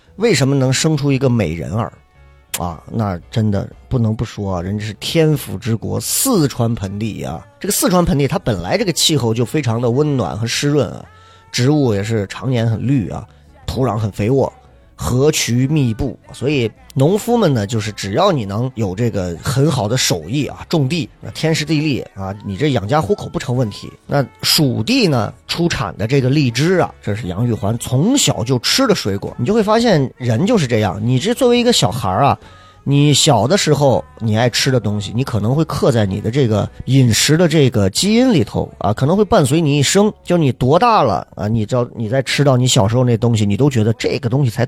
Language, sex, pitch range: Chinese, male, 110-150 Hz